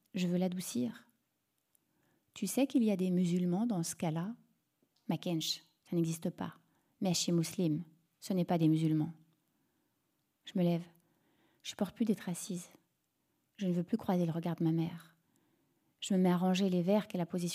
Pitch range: 170-215 Hz